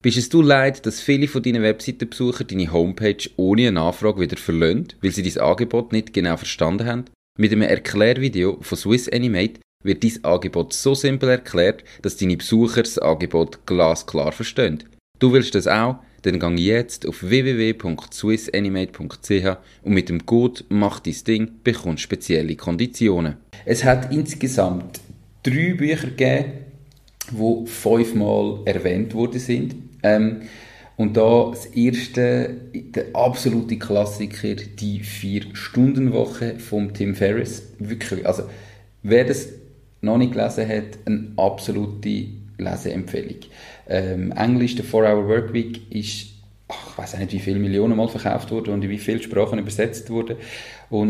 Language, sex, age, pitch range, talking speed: German, male, 30-49, 100-120 Hz, 140 wpm